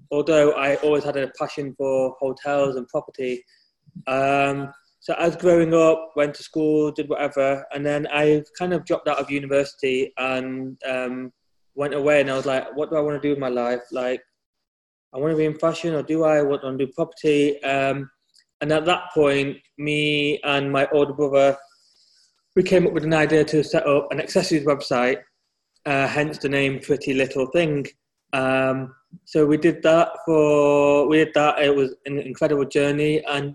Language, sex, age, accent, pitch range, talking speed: English, male, 20-39, British, 135-155 Hz, 190 wpm